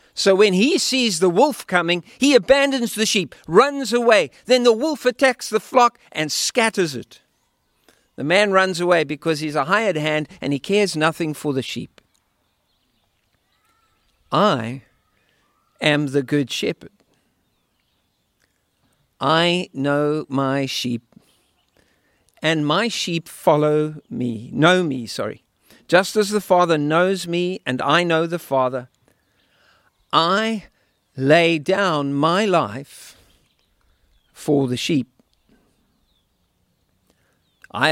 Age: 50-69